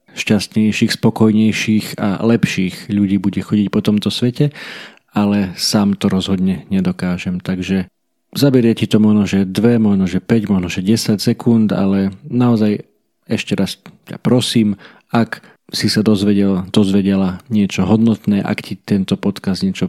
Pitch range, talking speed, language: 95-110 Hz, 140 wpm, Slovak